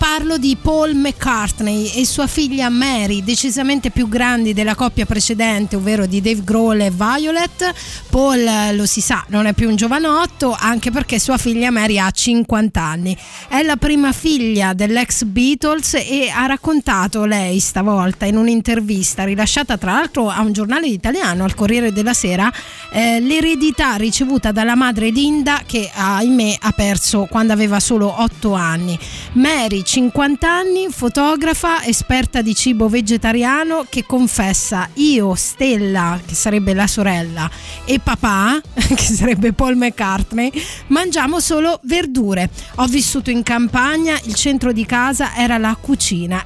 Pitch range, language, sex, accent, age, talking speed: 210-280 Hz, Italian, female, native, 20-39, 145 wpm